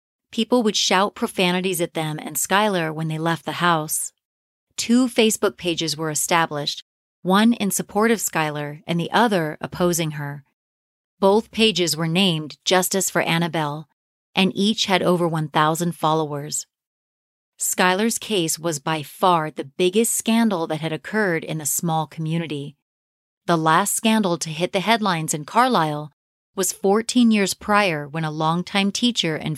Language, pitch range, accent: English, 155-200 Hz, American